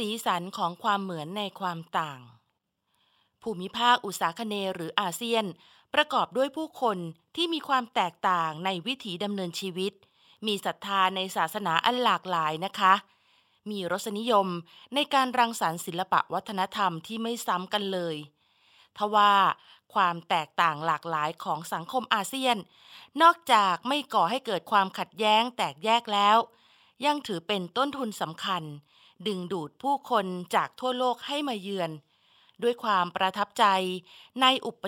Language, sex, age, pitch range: Thai, female, 20-39, 175-230 Hz